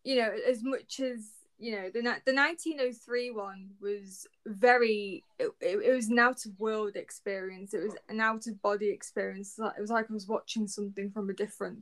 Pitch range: 205-245 Hz